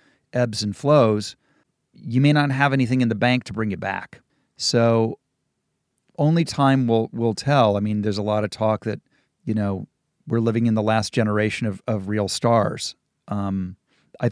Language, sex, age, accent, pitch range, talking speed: English, male, 40-59, American, 110-140 Hz, 180 wpm